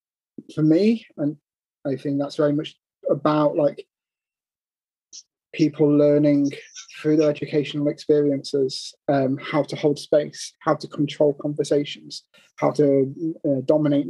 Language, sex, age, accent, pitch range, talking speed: Greek, male, 30-49, British, 140-155 Hz, 125 wpm